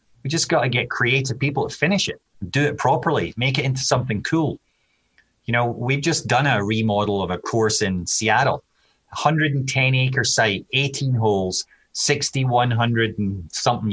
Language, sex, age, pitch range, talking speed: English, male, 30-49, 105-135 Hz, 160 wpm